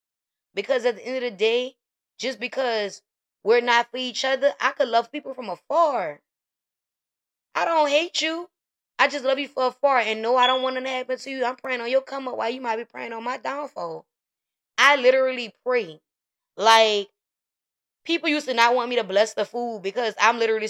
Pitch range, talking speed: 195-260 Hz, 205 wpm